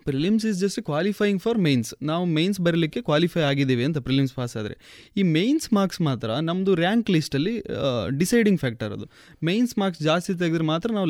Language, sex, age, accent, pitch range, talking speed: Kannada, male, 20-39, native, 135-190 Hz, 170 wpm